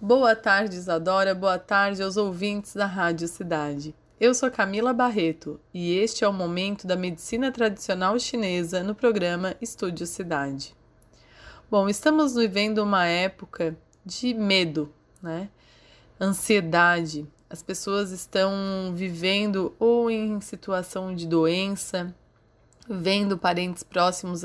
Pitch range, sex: 175-215 Hz, female